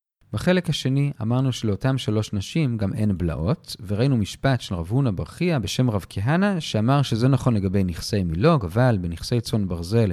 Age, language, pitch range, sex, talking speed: 40-59, Hebrew, 105-165 Hz, male, 165 wpm